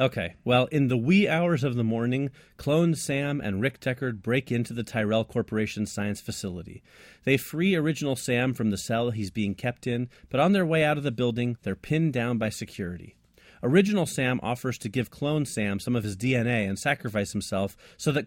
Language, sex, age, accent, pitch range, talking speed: English, male, 30-49, American, 105-145 Hz, 200 wpm